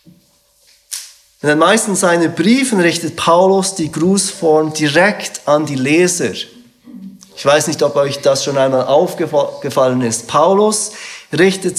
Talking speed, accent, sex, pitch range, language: 125 wpm, German, male, 130-170 Hz, German